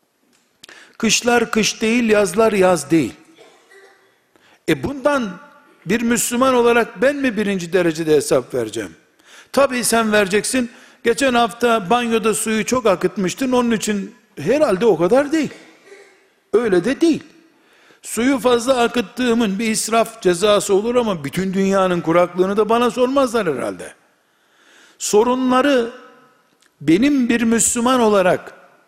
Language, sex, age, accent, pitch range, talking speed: Turkish, male, 60-79, native, 195-255 Hz, 115 wpm